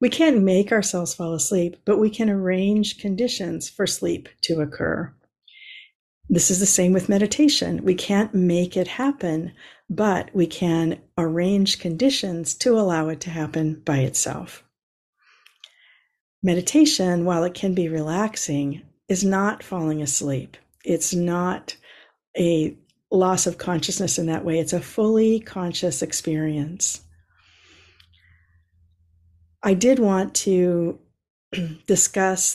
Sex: female